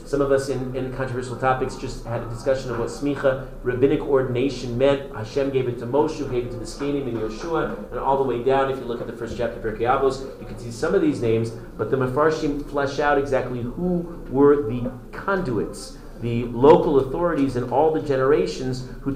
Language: English